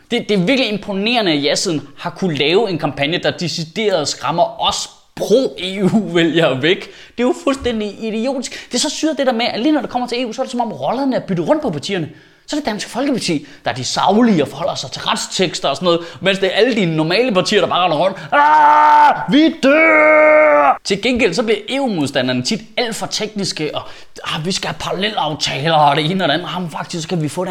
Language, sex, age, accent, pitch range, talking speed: Danish, male, 20-39, native, 170-245 Hz, 235 wpm